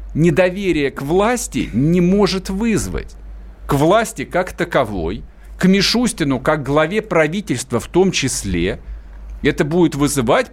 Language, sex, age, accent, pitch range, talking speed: Russian, male, 50-69, native, 130-200 Hz, 120 wpm